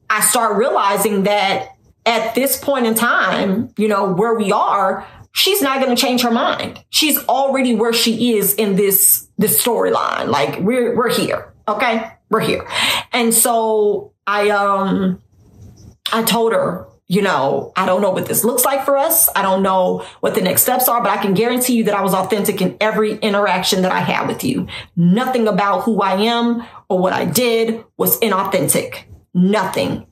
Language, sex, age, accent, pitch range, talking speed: English, female, 40-59, American, 195-235 Hz, 185 wpm